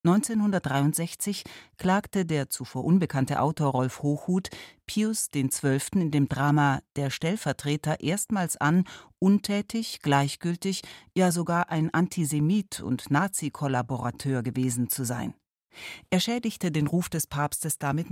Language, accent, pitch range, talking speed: German, German, 135-180 Hz, 120 wpm